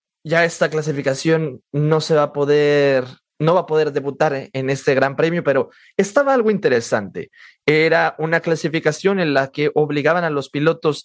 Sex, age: male, 30-49